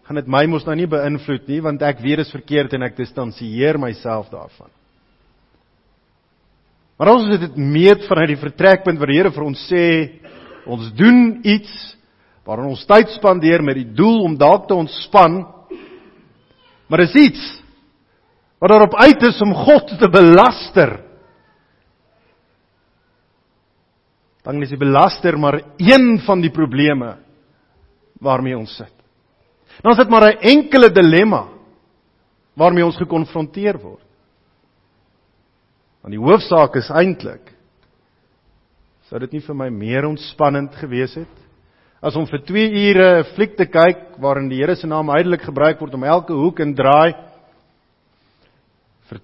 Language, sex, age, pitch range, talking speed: English, male, 50-69, 125-180 Hz, 140 wpm